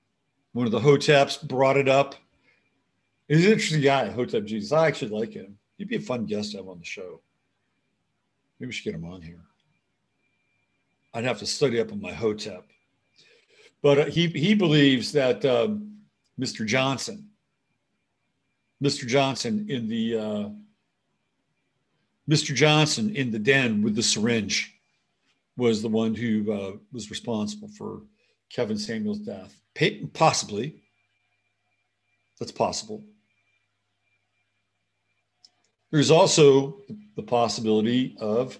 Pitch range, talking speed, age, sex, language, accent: 105-155 Hz, 125 wpm, 50-69, male, English, American